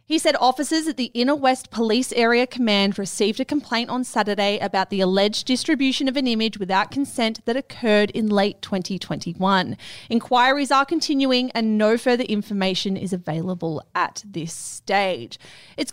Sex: female